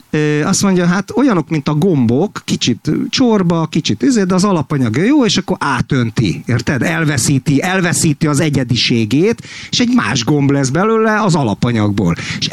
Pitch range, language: 120-170 Hz, Hungarian